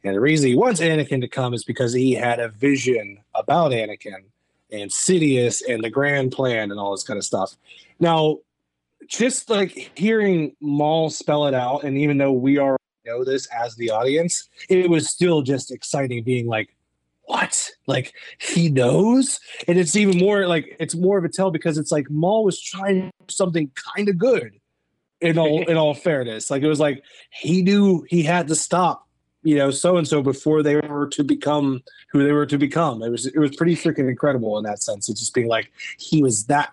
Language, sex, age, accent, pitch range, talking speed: English, male, 30-49, American, 125-170 Hz, 200 wpm